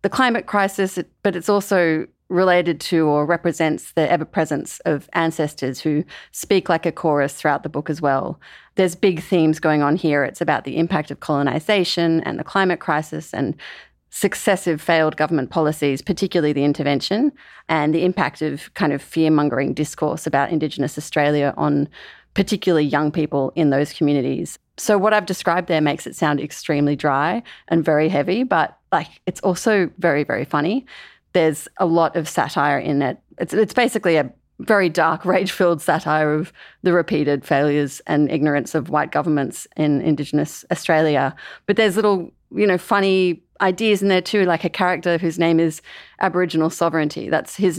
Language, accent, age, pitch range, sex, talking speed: English, Australian, 30-49, 150-185 Hz, female, 165 wpm